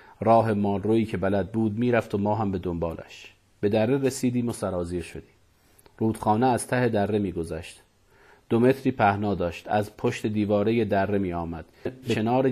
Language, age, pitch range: Persian, 40-59, 100-120 Hz